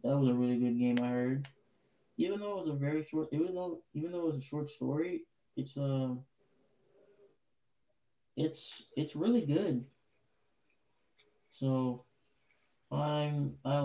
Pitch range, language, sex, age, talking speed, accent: 125-140 Hz, English, male, 20-39, 145 wpm, American